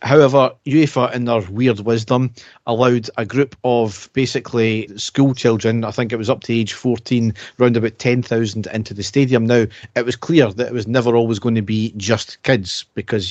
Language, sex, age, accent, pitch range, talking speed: English, male, 40-59, British, 110-125 Hz, 190 wpm